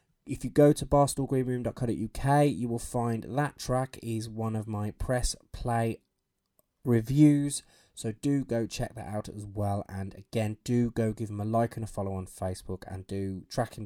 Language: English